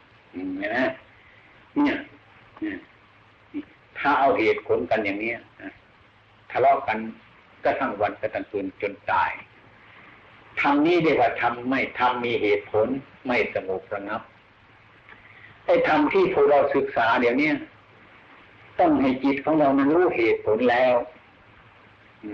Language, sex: Thai, male